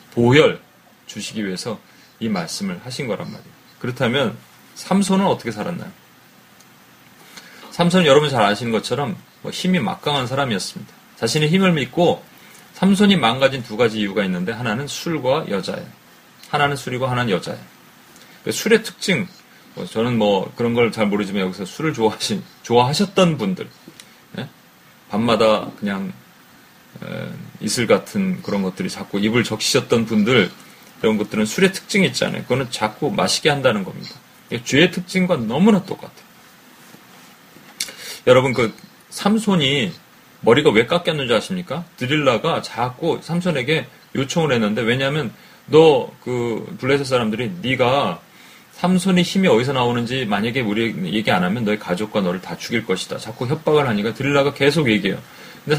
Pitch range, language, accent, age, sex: 115-185 Hz, Korean, native, 30-49, male